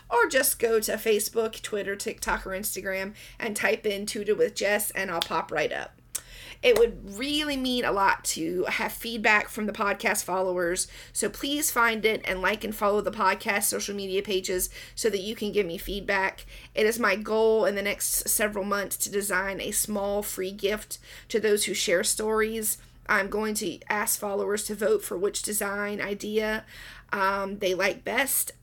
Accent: American